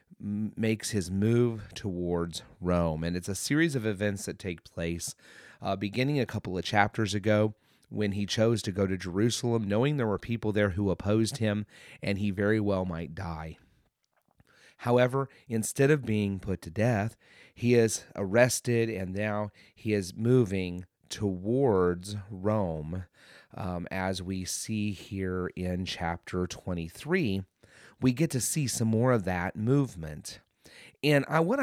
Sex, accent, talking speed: male, American, 150 wpm